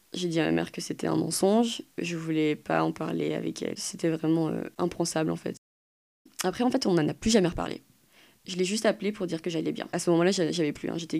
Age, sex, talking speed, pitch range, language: 20-39, female, 250 wpm, 150-185 Hz, French